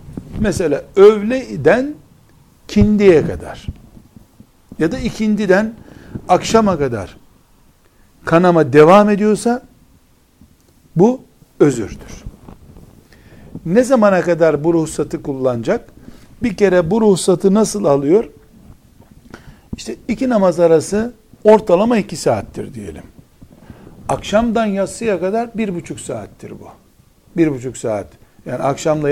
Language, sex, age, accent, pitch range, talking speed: Turkish, male, 60-79, native, 155-220 Hz, 95 wpm